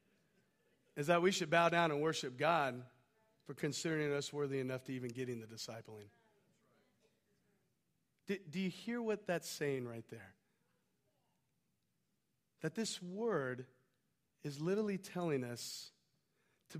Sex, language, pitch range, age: male, English, 150-250 Hz, 40-59